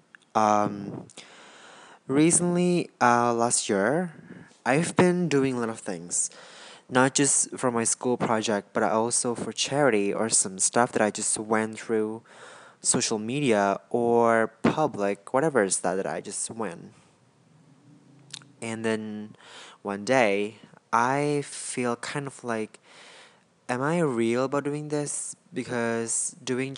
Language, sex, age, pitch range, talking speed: Indonesian, male, 20-39, 110-140 Hz, 130 wpm